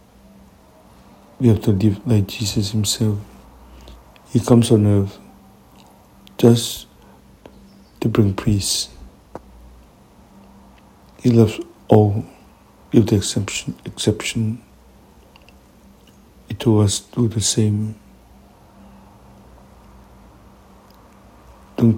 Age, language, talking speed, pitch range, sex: 60-79, English, 80 wpm, 95-115 Hz, male